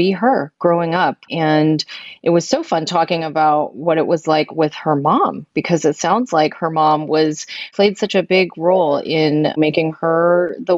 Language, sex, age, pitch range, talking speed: English, female, 30-49, 160-175 Hz, 190 wpm